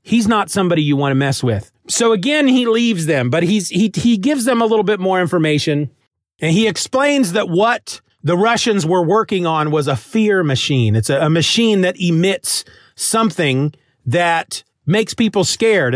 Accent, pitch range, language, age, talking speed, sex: American, 155-210 Hz, English, 40-59, 185 wpm, male